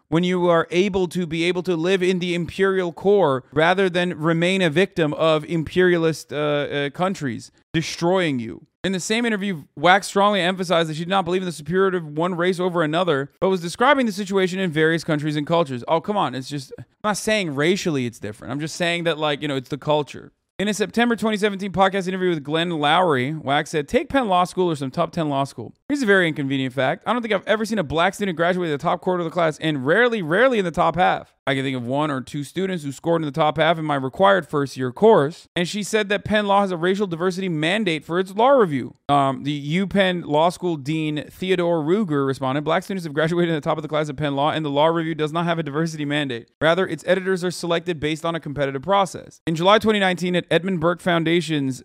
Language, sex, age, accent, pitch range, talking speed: English, male, 30-49, American, 150-185 Hz, 245 wpm